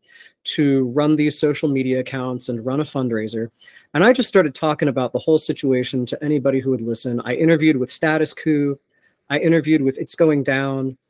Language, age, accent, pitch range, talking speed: English, 30-49, American, 130-185 Hz, 190 wpm